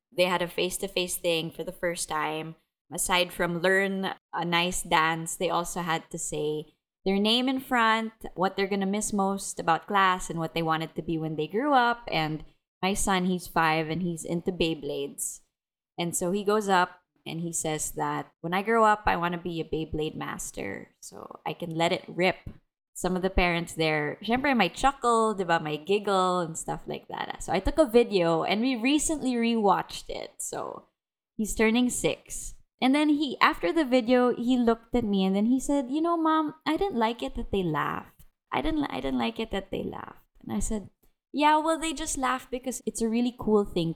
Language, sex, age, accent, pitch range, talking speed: English, female, 20-39, Filipino, 170-235 Hz, 210 wpm